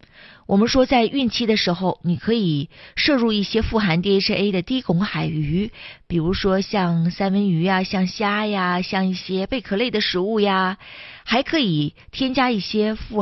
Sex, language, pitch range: female, Chinese, 170-215 Hz